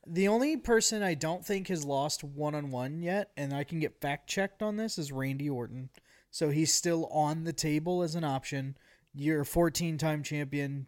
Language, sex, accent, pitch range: English, male, American, 135-165 Hz